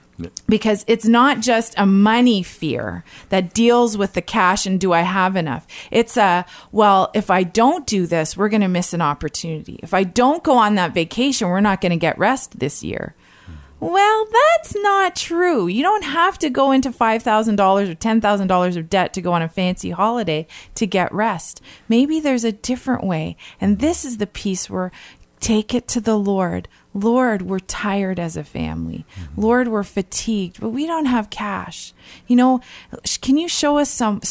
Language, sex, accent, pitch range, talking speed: English, female, American, 185-265 Hz, 185 wpm